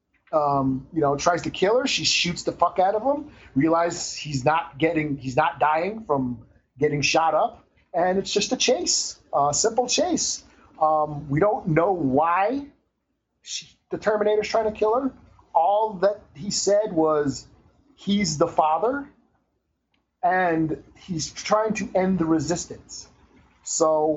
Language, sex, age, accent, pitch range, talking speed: English, male, 30-49, American, 145-200 Hz, 150 wpm